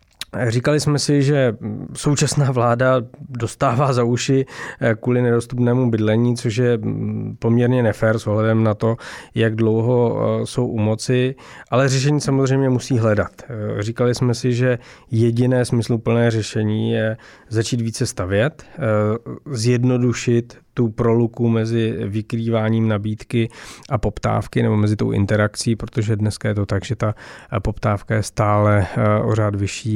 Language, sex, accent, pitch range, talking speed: Czech, male, native, 105-125 Hz, 130 wpm